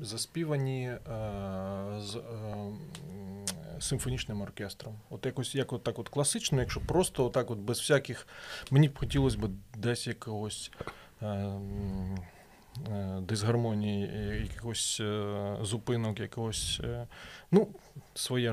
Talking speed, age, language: 115 wpm, 30-49, Ukrainian